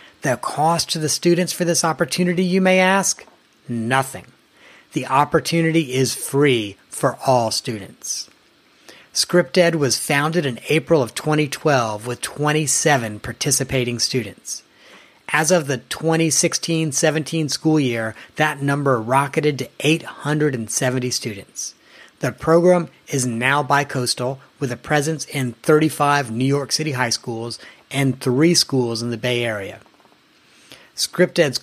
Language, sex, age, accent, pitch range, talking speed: English, male, 40-59, American, 125-160 Hz, 125 wpm